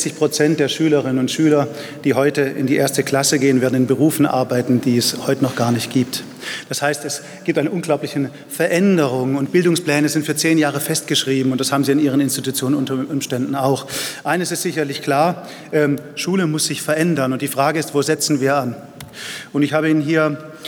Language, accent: German, German